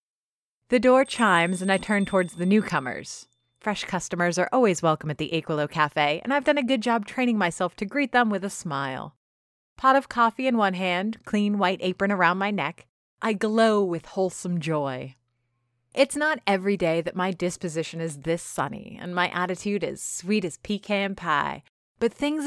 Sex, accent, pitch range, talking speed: female, American, 160-220 Hz, 185 wpm